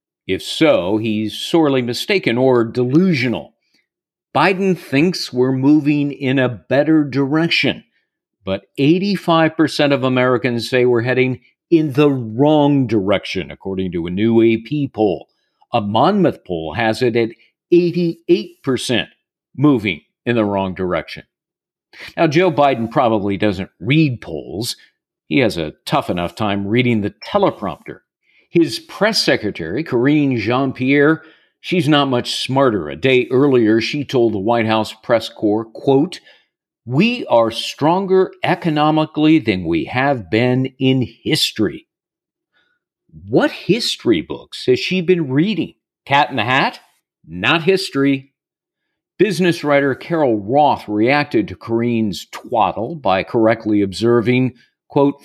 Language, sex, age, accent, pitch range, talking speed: English, male, 50-69, American, 115-155 Hz, 125 wpm